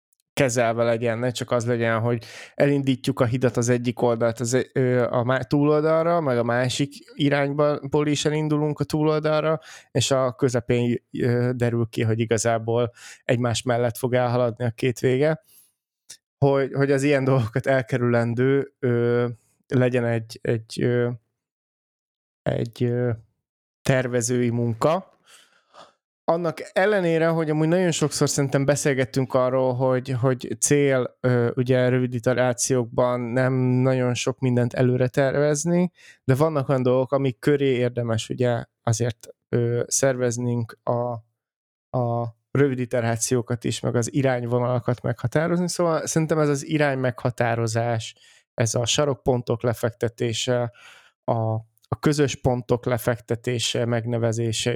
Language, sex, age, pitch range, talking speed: Hungarian, male, 20-39, 120-140 Hz, 115 wpm